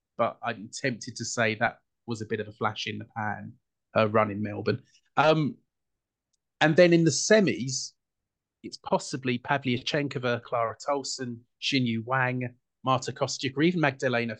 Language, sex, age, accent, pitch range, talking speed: English, male, 30-49, British, 115-145 Hz, 160 wpm